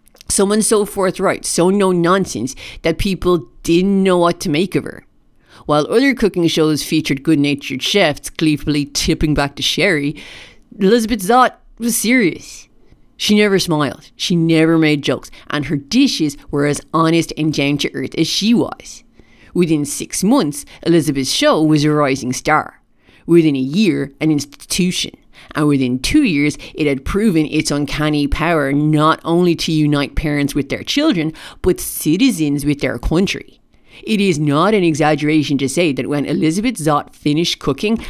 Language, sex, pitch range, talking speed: English, female, 145-190 Hz, 155 wpm